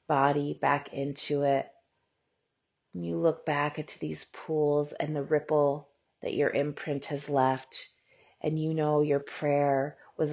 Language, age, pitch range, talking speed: English, 30-49, 135-150 Hz, 140 wpm